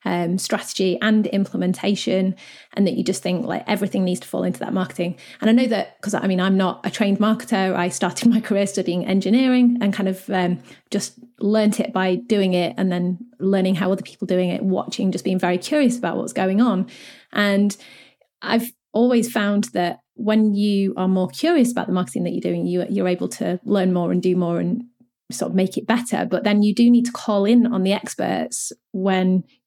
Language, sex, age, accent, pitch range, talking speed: English, female, 30-49, British, 185-235 Hz, 210 wpm